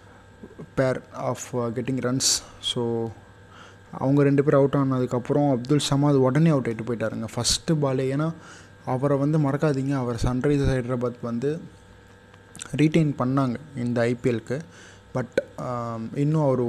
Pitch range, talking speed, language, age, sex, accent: 120-145 Hz, 120 wpm, Tamil, 20-39, male, native